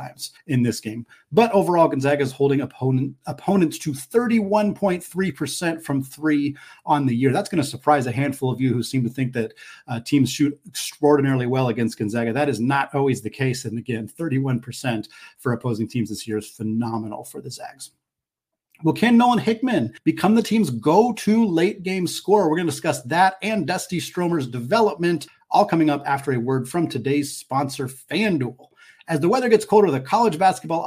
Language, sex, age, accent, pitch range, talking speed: English, male, 30-49, American, 130-180 Hz, 185 wpm